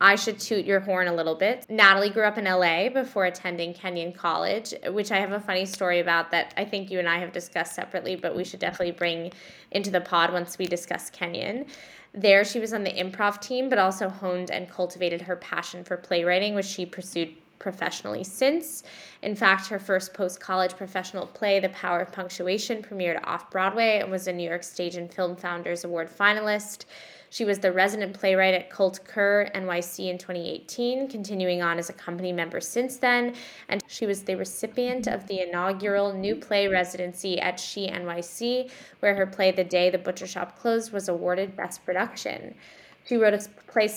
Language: English